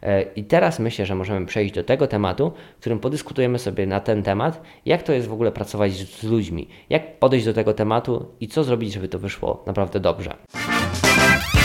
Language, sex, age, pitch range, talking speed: Polish, male, 20-39, 100-125 Hz, 190 wpm